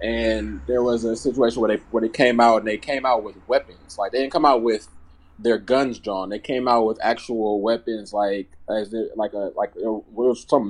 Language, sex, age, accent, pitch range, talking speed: English, male, 20-39, American, 105-125 Hz, 225 wpm